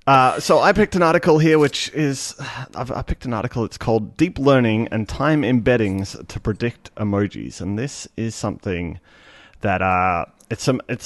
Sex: male